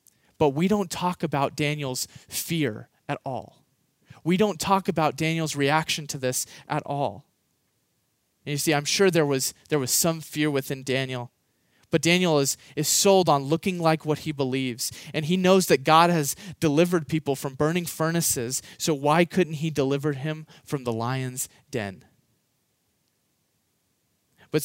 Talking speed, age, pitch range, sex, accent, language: 160 wpm, 30-49, 140-170 Hz, male, American, English